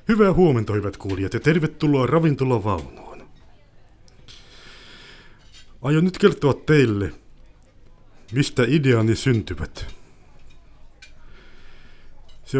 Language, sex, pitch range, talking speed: Finnish, male, 105-120 Hz, 70 wpm